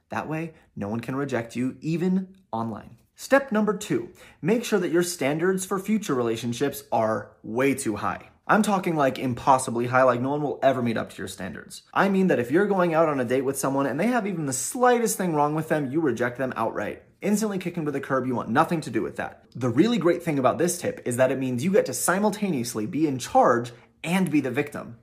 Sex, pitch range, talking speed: male, 120-175 Hz, 235 wpm